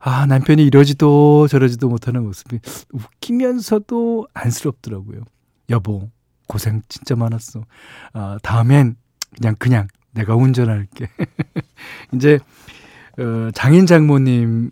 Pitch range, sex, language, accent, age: 115-150 Hz, male, Korean, native, 40-59